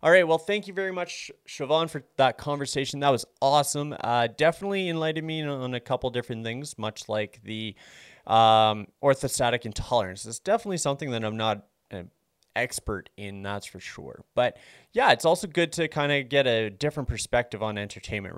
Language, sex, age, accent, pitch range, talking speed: English, male, 20-39, American, 110-145 Hz, 180 wpm